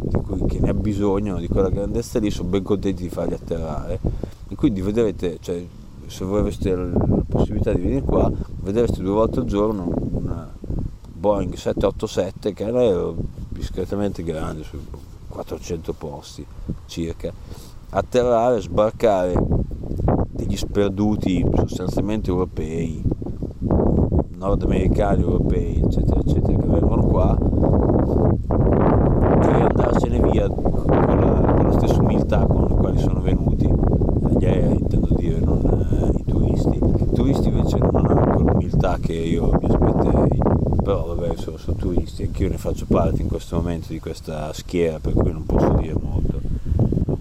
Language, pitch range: Italian, 85-100 Hz